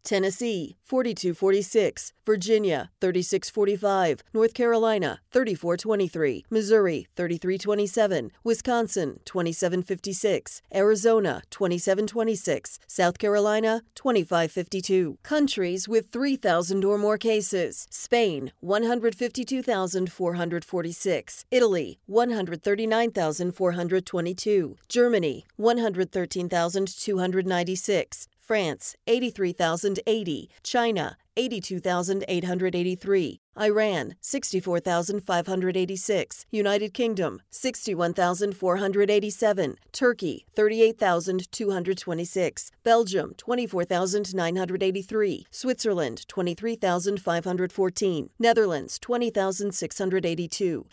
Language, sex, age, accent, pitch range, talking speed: English, female, 40-59, American, 180-220 Hz, 55 wpm